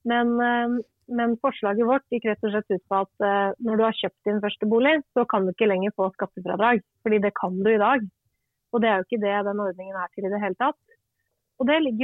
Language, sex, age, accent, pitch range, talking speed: English, female, 30-49, Swedish, 210-255 Hz, 215 wpm